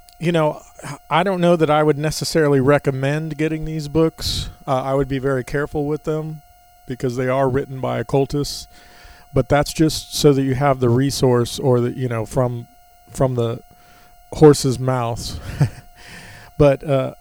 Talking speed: 165 wpm